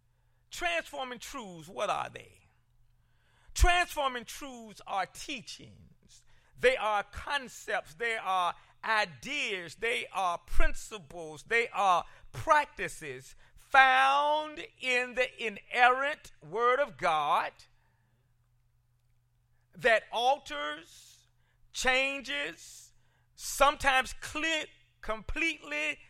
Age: 40-59